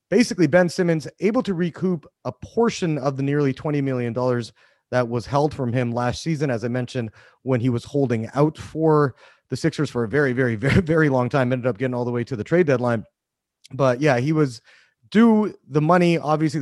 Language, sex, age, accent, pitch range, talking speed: English, male, 30-49, American, 120-150 Hz, 205 wpm